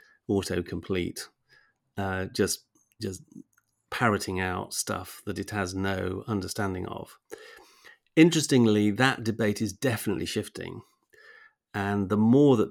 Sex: male